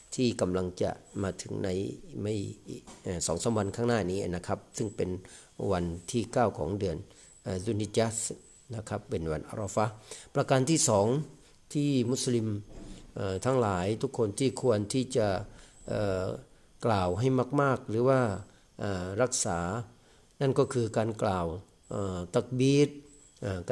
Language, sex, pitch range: Thai, male, 100-130 Hz